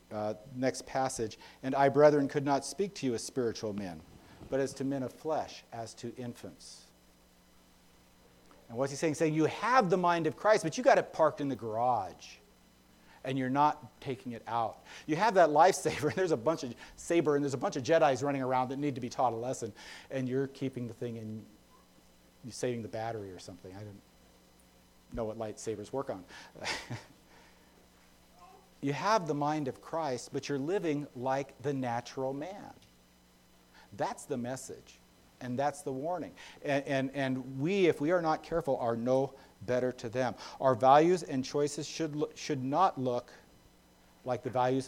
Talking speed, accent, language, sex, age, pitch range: 185 wpm, American, English, male, 40-59, 105-145 Hz